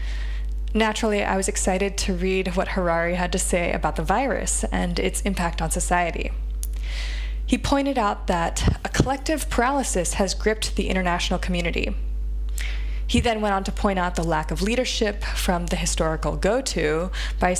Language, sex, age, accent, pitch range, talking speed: English, female, 20-39, American, 155-220 Hz, 160 wpm